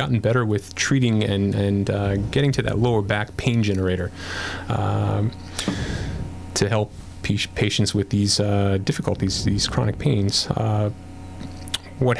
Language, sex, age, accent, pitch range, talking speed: English, male, 30-49, American, 100-125 Hz, 135 wpm